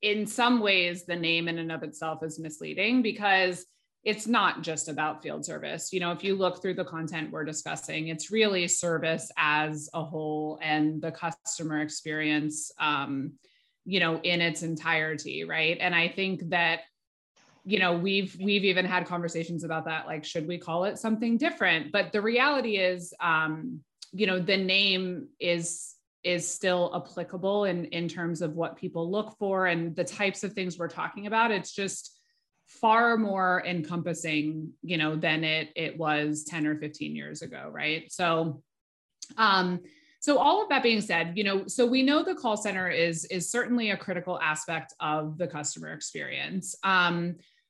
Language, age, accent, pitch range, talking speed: English, 20-39, American, 160-200 Hz, 175 wpm